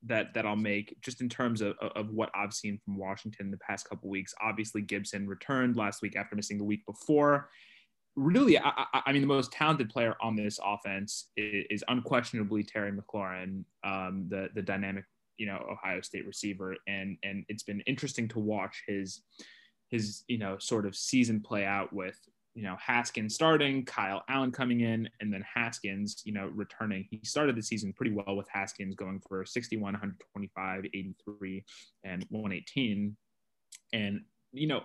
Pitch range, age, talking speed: 100-120 Hz, 20-39, 175 wpm